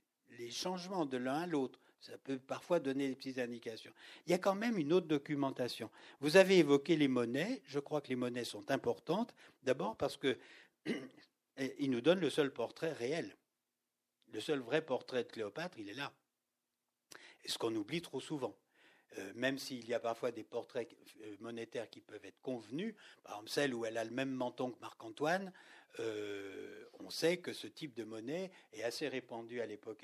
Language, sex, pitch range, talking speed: French, male, 115-150 Hz, 185 wpm